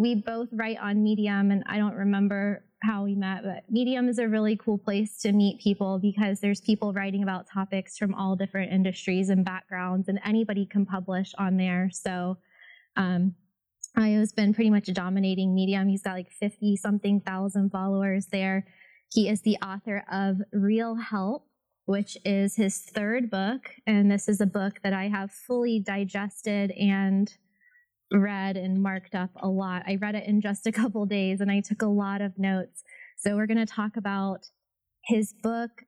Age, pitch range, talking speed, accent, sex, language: 20-39, 195-220 Hz, 180 wpm, American, female, English